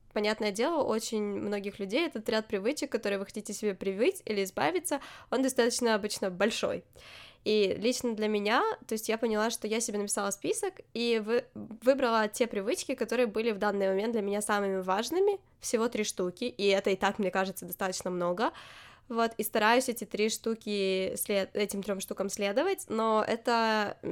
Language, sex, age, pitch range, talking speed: Ukrainian, female, 10-29, 200-235 Hz, 180 wpm